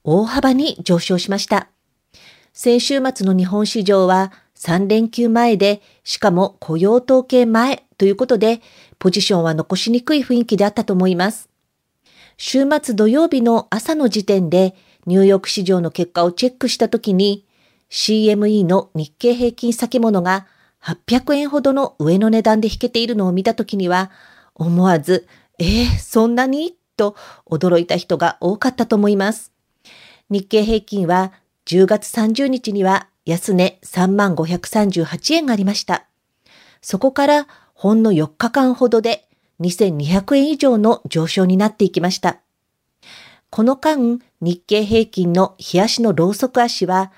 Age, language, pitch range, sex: 40-59, Japanese, 185-240 Hz, female